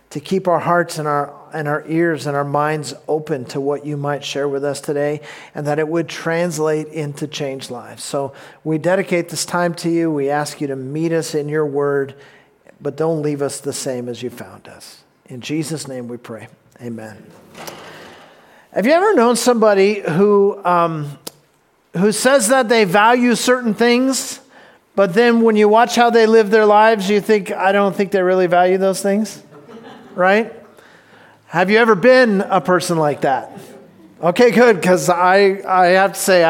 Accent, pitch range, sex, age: American, 150-205 Hz, male, 50-69